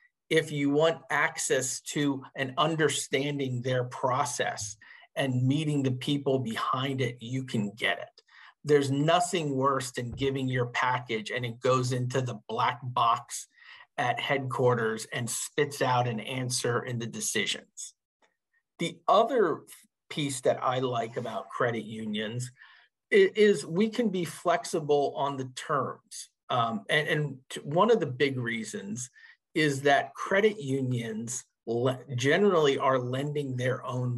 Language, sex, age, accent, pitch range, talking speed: English, male, 50-69, American, 125-150 Hz, 135 wpm